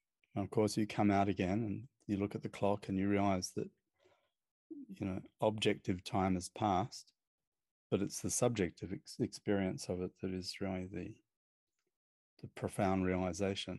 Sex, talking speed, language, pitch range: male, 165 wpm, English, 95-115 Hz